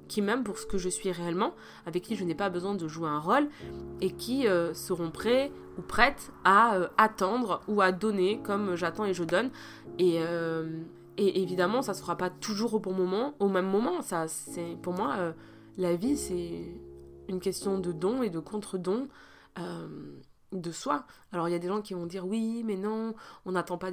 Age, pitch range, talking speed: 20-39, 170-215 Hz, 210 wpm